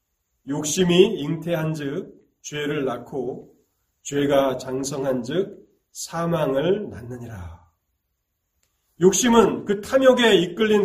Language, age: Korean, 40-59